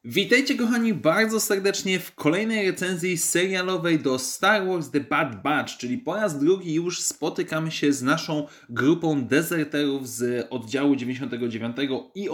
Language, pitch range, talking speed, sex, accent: Polish, 135-185 Hz, 135 wpm, male, native